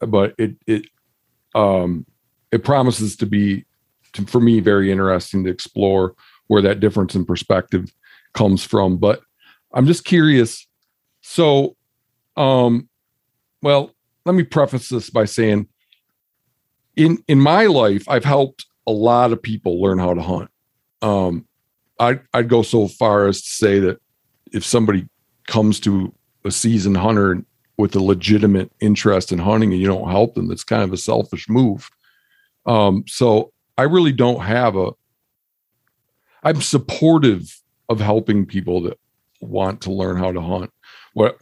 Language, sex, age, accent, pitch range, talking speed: English, male, 50-69, American, 95-120 Hz, 150 wpm